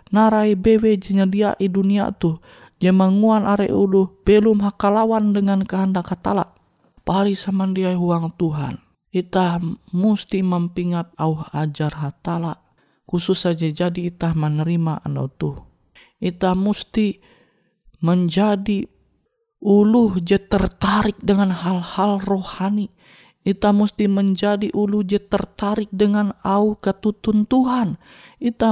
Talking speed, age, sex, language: 110 wpm, 20-39, male, Indonesian